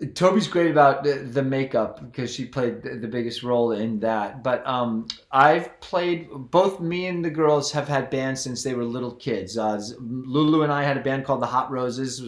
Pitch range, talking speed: 130-175 Hz, 200 wpm